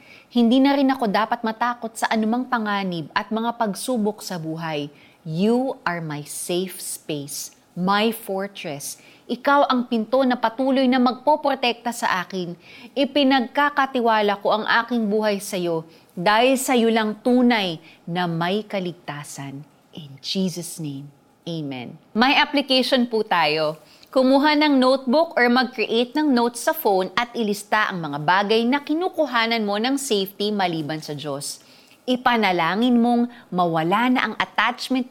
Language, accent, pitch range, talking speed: Filipino, native, 165-245 Hz, 140 wpm